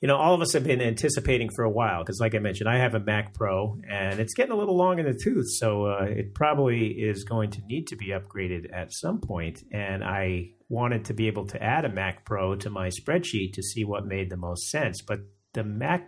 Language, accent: English, American